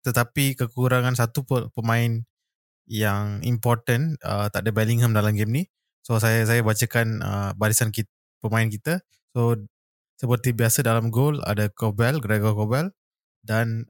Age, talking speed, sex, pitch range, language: 20-39, 140 wpm, male, 105-130 Hz, Malay